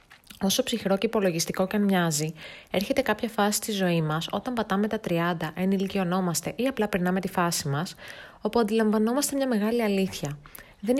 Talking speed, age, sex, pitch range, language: 105 wpm, 20-39, female, 170-225 Hz, Greek